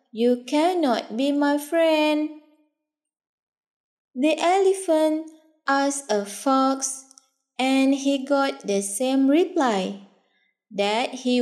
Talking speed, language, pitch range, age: 95 wpm, English, 230-315 Hz, 20-39